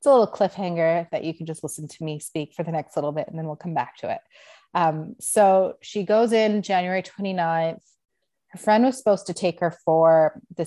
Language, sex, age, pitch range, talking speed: English, female, 30-49, 160-200 Hz, 225 wpm